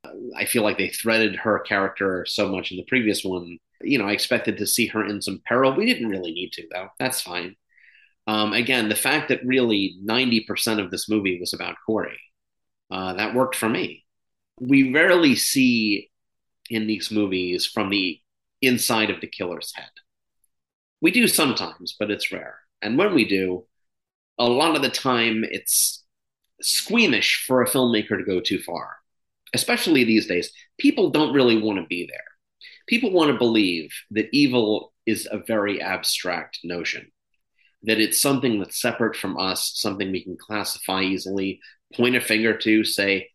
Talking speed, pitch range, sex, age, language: 170 wpm, 95-120 Hz, male, 30-49, English